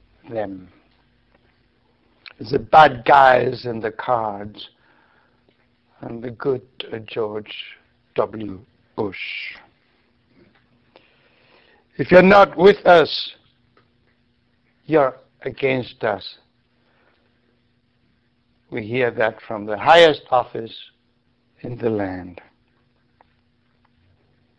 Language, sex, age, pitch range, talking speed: English, male, 60-79, 105-130 Hz, 75 wpm